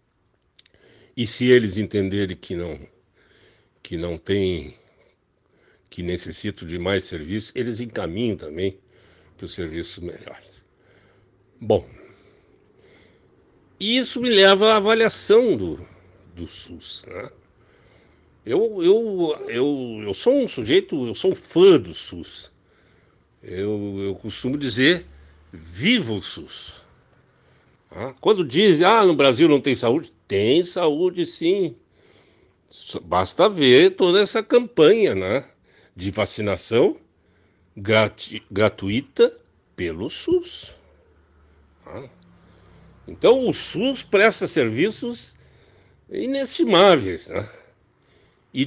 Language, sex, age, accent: Portuguese, male, 60-79, Brazilian